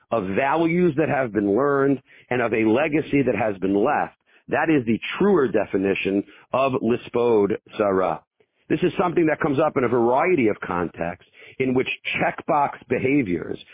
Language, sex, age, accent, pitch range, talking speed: English, male, 50-69, American, 115-150 Hz, 160 wpm